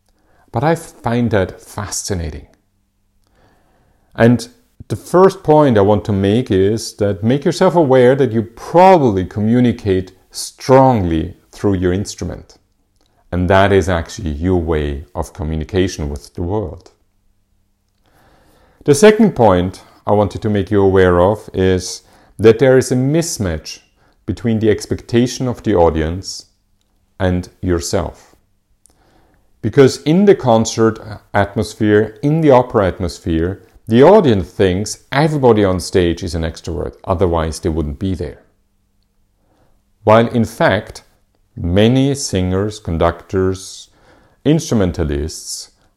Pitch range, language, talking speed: 90-115 Hz, English, 120 wpm